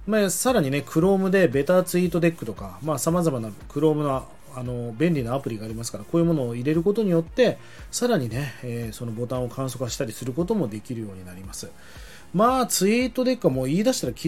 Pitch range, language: 120-195 Hz, Japanese